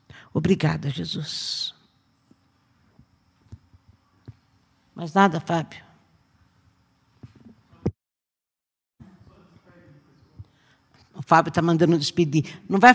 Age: 50-69